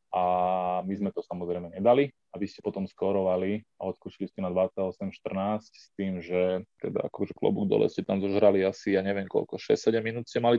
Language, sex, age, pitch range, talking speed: Slovak, male, 20-39, 90-100 Hz, 185 wpm